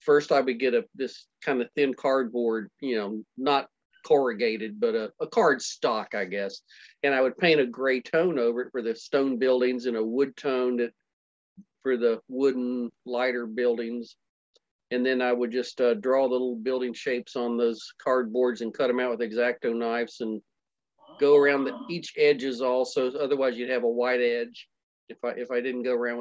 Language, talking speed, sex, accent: English, 195 wpm, male, American